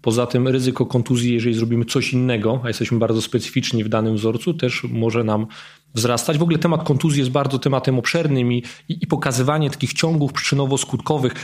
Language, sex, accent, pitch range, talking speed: Polish, male, native, 120-140 Hz, 180 wpm